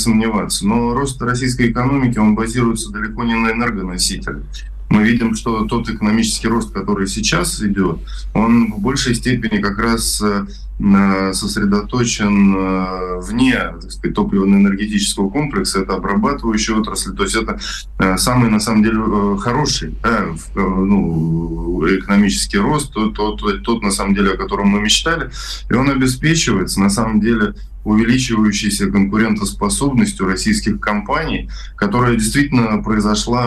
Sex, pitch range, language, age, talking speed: male, 100-120 Hz, Russian, 20-39, 125 wpm